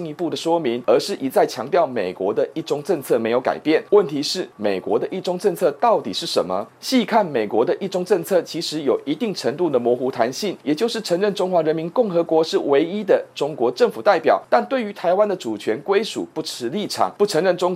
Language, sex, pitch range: Chinese, male, 155-215 Hz